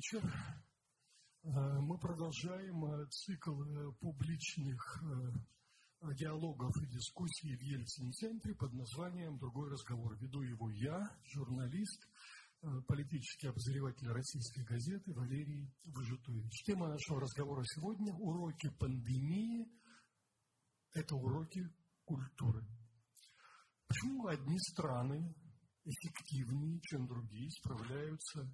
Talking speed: 85 wpm